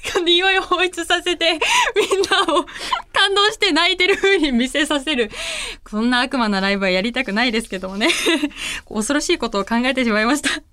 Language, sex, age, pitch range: Japanese, female, 20-39, 265-400 Hz